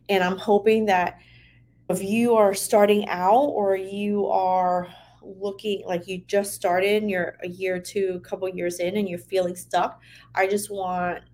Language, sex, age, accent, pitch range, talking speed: English, female, 30-49, American, 175-200 Hz, 180 wpm